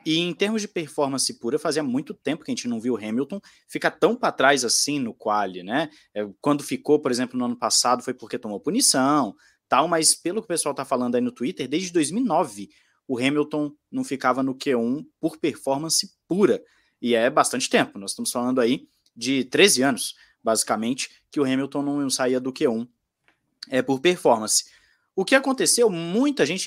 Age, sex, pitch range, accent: 20-39, male, 125-195 Hz, Brazilian